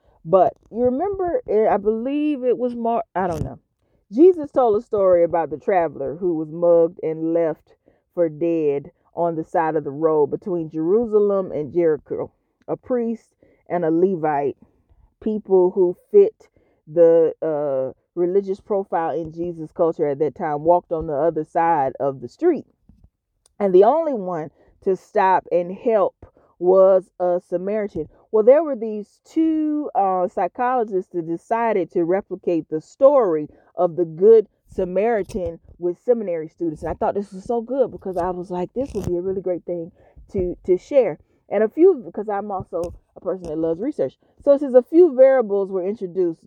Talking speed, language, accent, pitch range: 170 wpm, English, American, 170-235 Hz